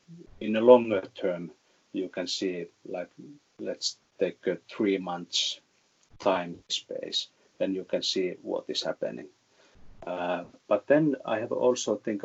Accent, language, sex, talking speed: Finnish, English, male, 140 wpm